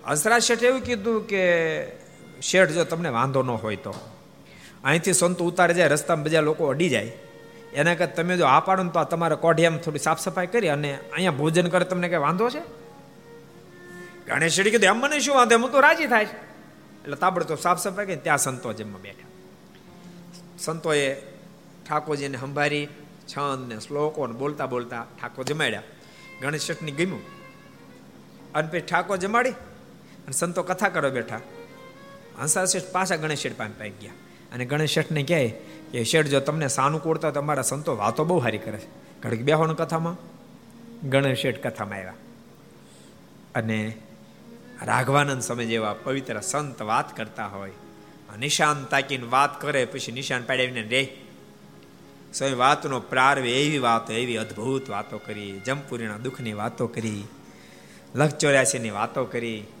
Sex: male